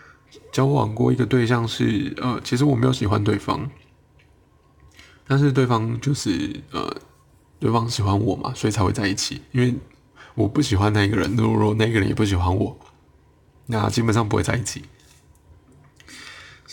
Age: 20-39